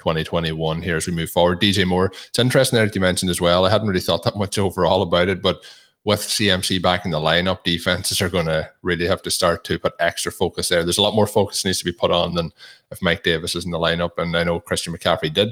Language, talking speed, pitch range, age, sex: English, 265 wpm, 85-105 Hz, 20-39, male